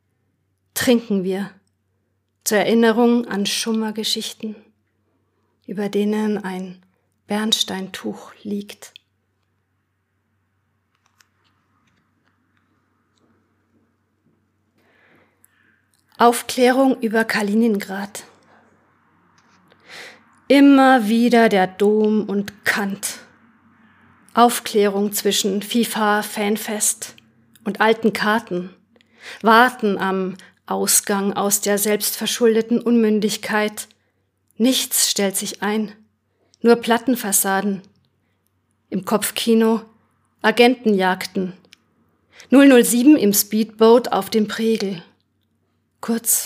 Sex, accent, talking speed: female, German, 65 wpm